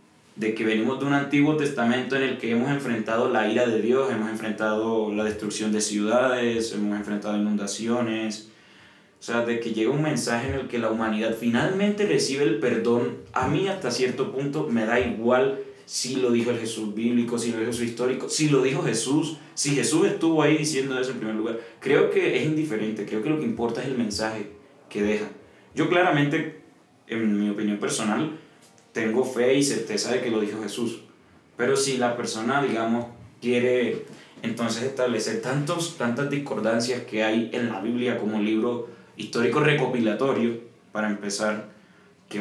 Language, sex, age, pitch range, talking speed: Spanish, male, 20-39, 110-135 Hz, 180 wpm